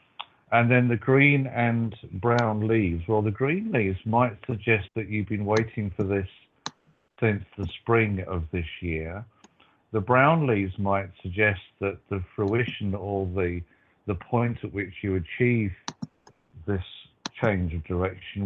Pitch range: 90-110 Hz